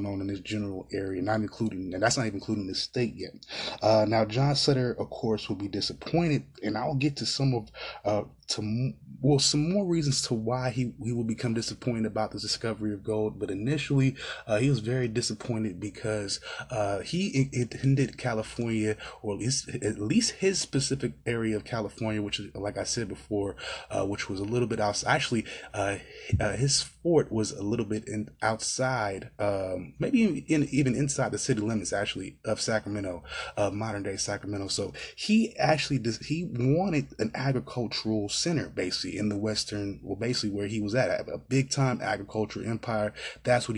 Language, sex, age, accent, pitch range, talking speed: English, male, 20-39, American, 105-130 Hz, 185 wpm